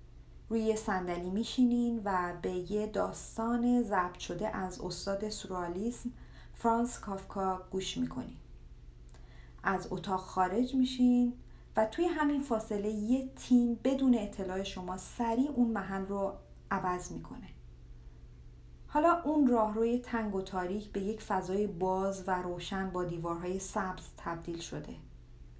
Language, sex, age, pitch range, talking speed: Persian, female, 40-59, 175-225 Hz, 125 wpm